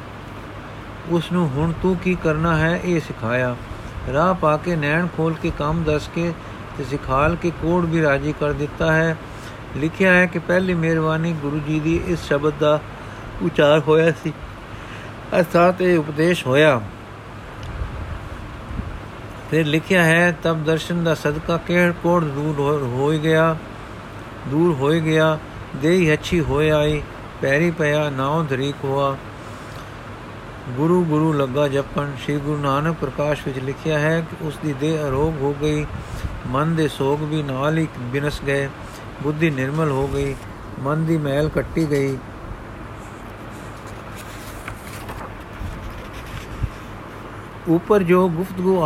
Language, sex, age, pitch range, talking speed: Punjabi, male, 50-69, 120-165 Hz, 135 wpm